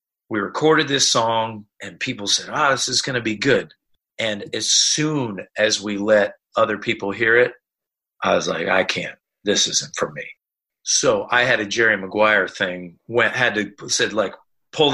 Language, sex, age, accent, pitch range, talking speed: English, male, 40-59, American, 105-145 Hz, 185 wpm